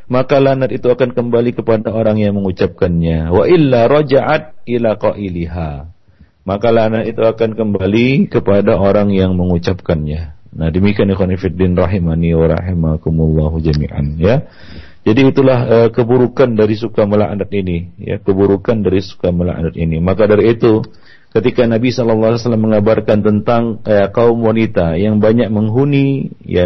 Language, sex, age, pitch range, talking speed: Malay, male, 40-59, 95-125 Hz, 135 wpm